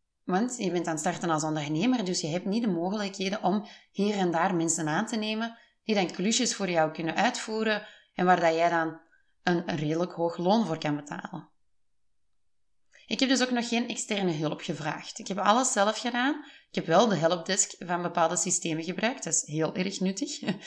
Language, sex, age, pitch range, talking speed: Dutch, female, 30-49, 165-215 Hz, 200 wpm